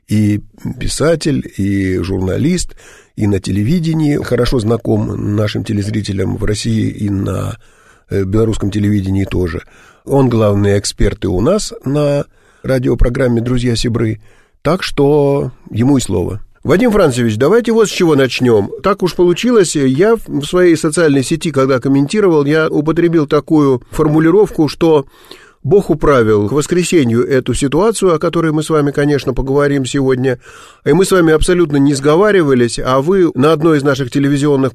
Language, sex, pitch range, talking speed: Russian, male, 120-170 Hz, 145 wpm